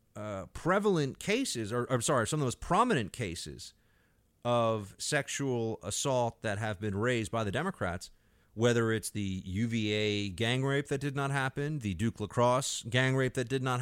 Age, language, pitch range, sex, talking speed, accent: 40-59, English, 100-125 Hz, male, 175 wpm, American